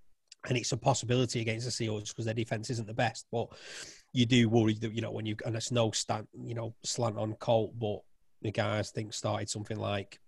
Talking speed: 220 wpm